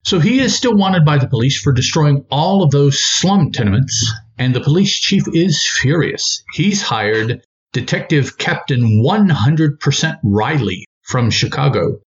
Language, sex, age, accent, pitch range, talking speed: English, male, 50-69, American, 130-165 Hz, 145 wpm